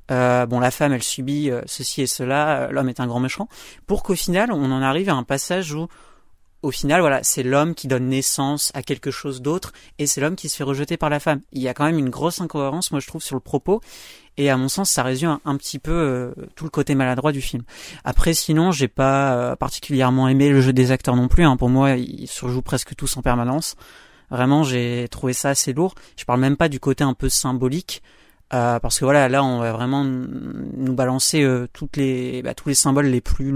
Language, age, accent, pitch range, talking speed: French, 30-49, French, 125-150 Hz, 230 wpm